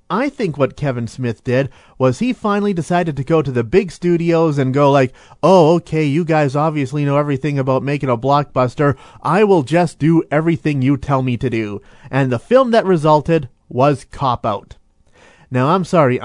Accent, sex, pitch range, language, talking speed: American, male, 130-170 Hz, English, 190 wpm